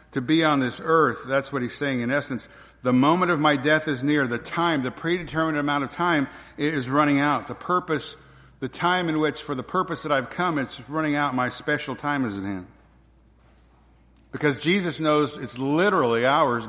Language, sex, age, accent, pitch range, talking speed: English, male, 50-69, American, 130-160 Hz, 200 wpm